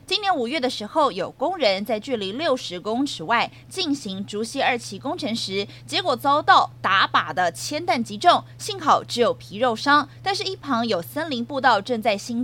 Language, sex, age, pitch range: Chinese, female, 20-39, 215-285 Hz